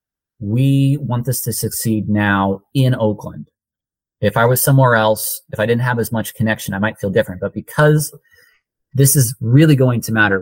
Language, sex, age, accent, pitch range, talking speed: English, male, 30-49, American, 100-135 Hz, 185 wpm